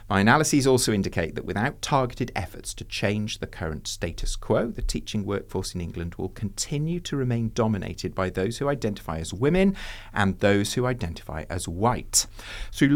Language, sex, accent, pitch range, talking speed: English, male, British, 90-125 Hz, 170 wpm